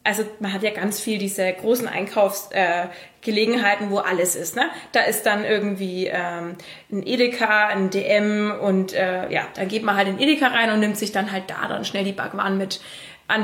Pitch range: 200-235 Hz